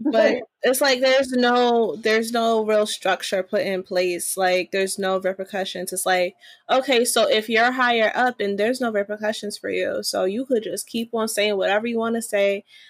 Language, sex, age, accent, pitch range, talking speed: English, female, 20-39, American, 210-260 Hz, 195 wpm